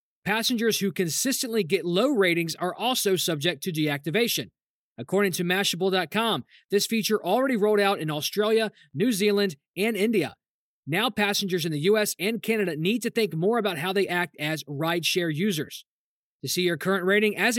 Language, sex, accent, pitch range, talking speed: English, male, American, 170-210 Hz, 165 wpm